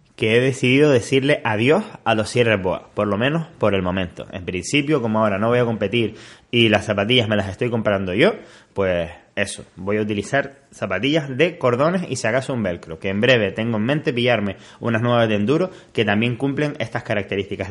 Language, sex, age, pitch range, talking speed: Spanish, male, 20-39, 105-130 Hz, 205 wpm